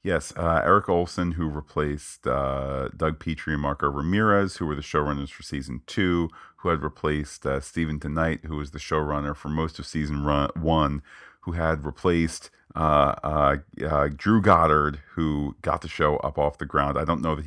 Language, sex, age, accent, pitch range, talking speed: English, male, 40-59, American, 70-80 Hz, 190 wpm